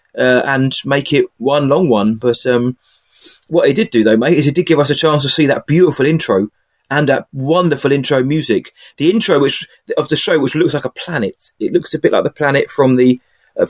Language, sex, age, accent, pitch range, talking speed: English, male, 30-49, British, 125-165 Hz, 230 wpm